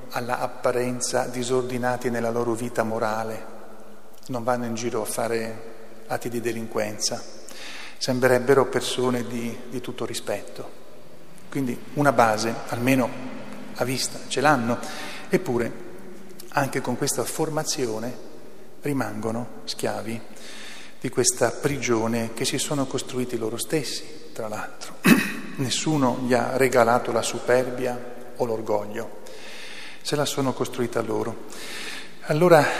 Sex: male